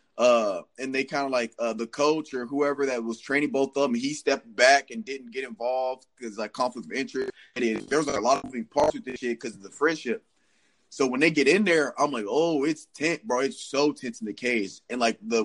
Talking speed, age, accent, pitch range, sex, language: 260 wpm, 20-39, American, 125-175 Hz, male, English